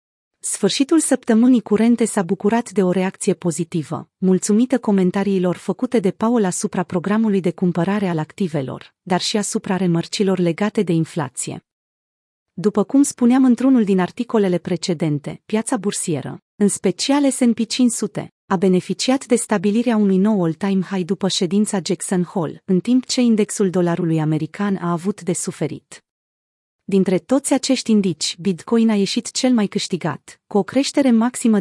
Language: Romanian